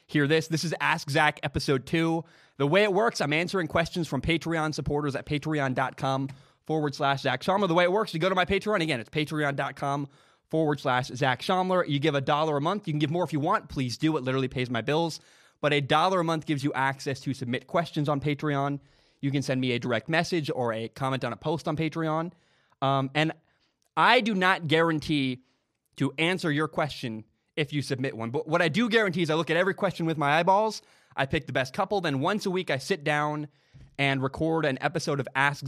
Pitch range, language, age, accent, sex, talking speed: 135-165 Hz, English, 20-39, American, male, 225 wpm